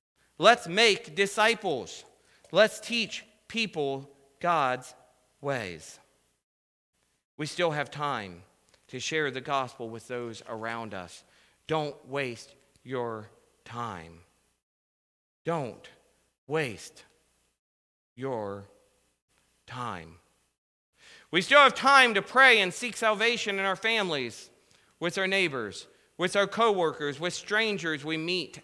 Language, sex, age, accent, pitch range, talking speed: English, male, 40-59, American, 125-195 Hz, 105 wpm